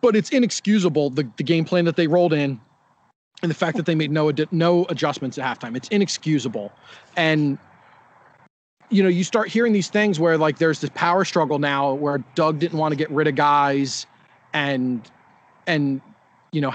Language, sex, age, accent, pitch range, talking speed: English, male, 30-49, American, 150-200 Hz, 190 wpm